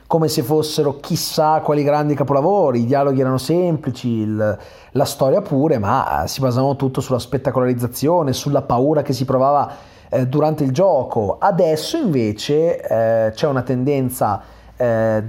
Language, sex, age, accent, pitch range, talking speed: Italian, male, 30-49, native, 130-165 Hz, 140 wpm